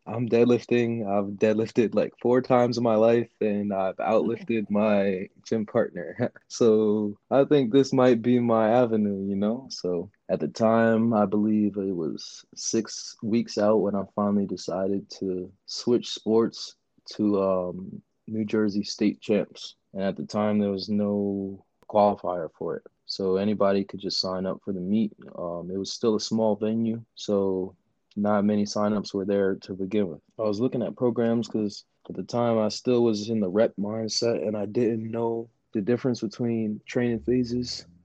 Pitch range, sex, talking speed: 100-115 Hz, male, 175 wpm